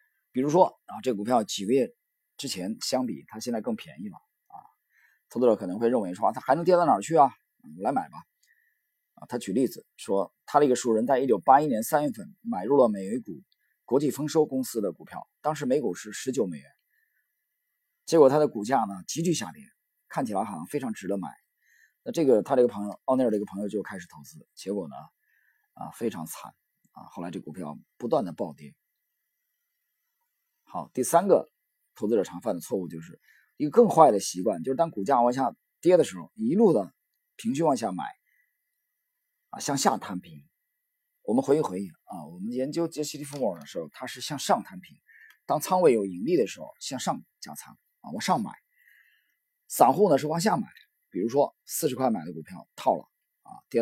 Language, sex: Chinese, male